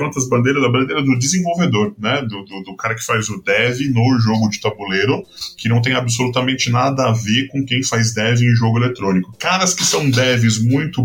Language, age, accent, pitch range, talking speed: Portuguese, 10-29, Brazilian, 115-140 Hz, 205 wpm